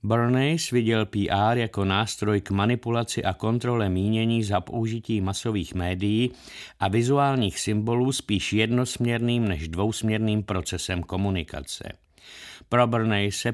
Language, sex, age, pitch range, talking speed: Czech, male, 50-69, 100-125 Hz, 110 wpm